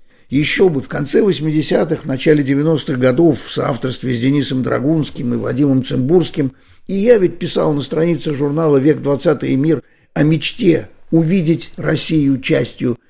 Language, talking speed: Russian, 145 wpm